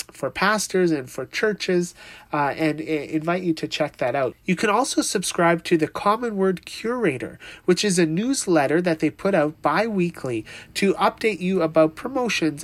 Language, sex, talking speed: English, male, 170 wpm